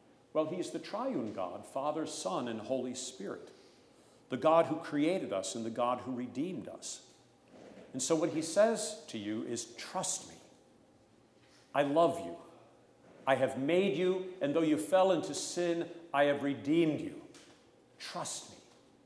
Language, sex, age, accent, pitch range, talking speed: English, male, 50-69, American, 120-160 Hz, 160 wpm